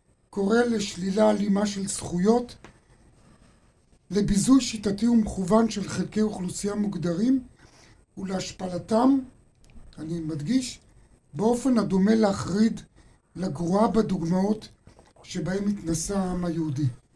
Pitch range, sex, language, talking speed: 155-200 Hz, male, Hebrew, 85 wpm